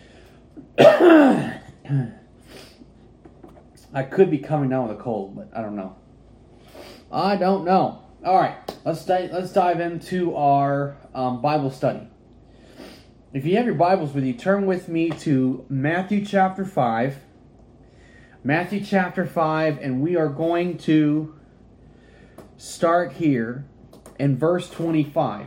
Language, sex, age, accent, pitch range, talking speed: English, male, 30-49, American, 135-185 Hz, 125 wpm